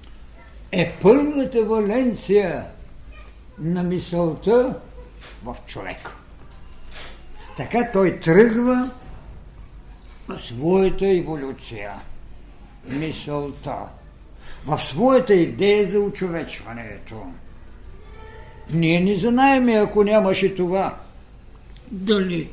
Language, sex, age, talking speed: Bulgarian, male, 60-79, 65 wpm